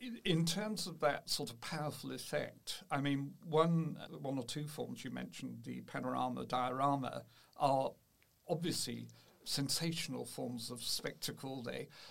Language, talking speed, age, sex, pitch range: English, 135 wpm, 60-79, male, 140-170 Hz